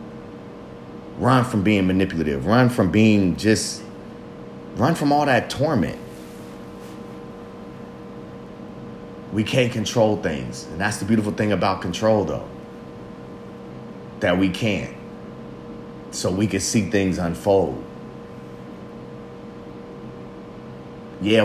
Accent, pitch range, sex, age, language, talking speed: American, 95-115 Hz, male, 30-49, English, 100 wpm